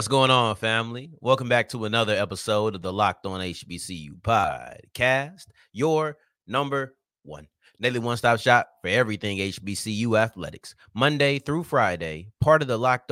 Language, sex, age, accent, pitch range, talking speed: English, male, 30-49, American, 105-140 Hz, 150 wpm